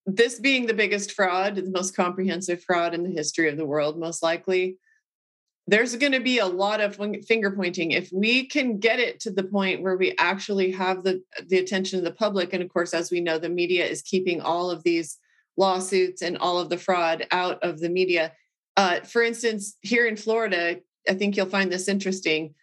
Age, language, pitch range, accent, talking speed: 30-49, English, 180-215 Hz, American, 210 wpm